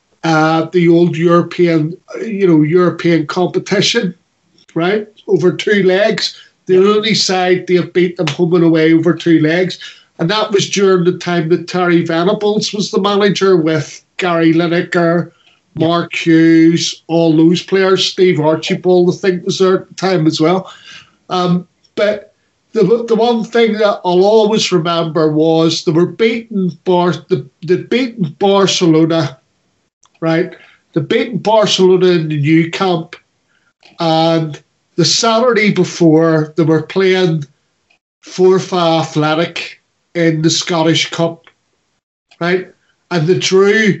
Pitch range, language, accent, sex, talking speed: 165-185 Hz, English, Irish, male, 135 wpm